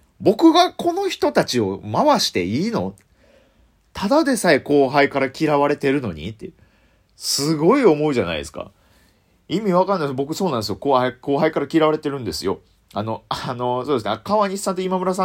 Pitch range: 135-205 Hz